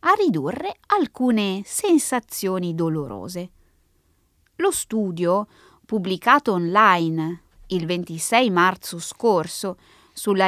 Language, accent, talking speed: Italian, native, 80 wpm